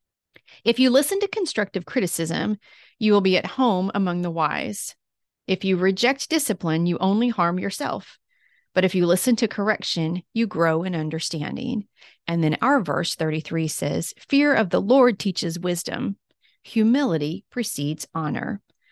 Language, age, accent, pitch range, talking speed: English, 30-49, American, 170-225 Hz, 150 wpm